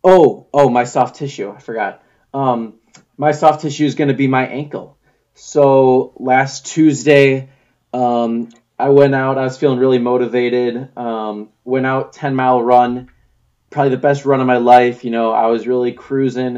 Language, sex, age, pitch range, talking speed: English, male, 20-39, 115-130 Hz, 170 wpm